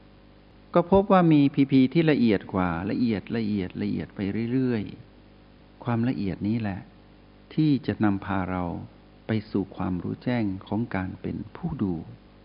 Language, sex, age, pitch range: Thai, male, 60-79, 95-120 Hz